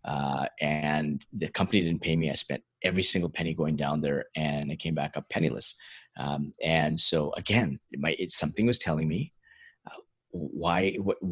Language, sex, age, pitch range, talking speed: English, male, 30-49, 75-90 Hz, 185 wpm